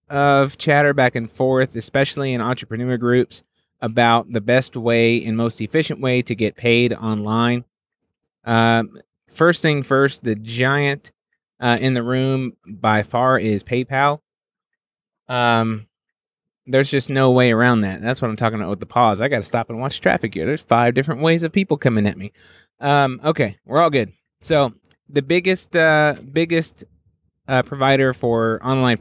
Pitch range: 115-140 Hz